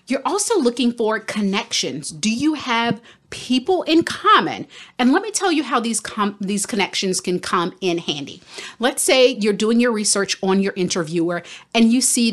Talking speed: 180 wpm